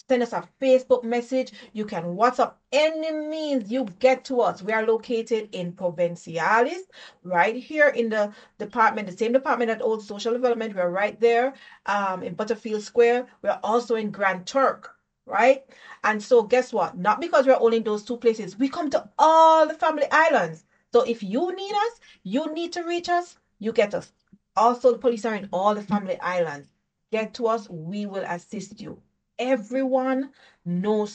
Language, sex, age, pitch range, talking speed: English, female, 40-59, 210-275 Hz, 180 wpm